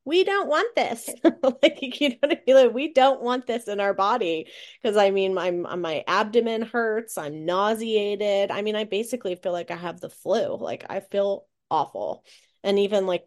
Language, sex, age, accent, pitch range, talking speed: English, female, 30-49, American, 165-225 Hz, 200 wpm